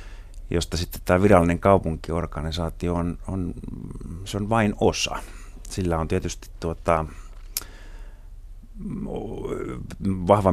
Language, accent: Finnish, native